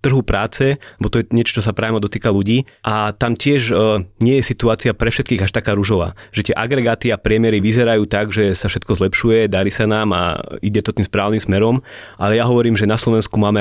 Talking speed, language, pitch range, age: 220 wpm, Slovak, 100-115 Hz, 20-39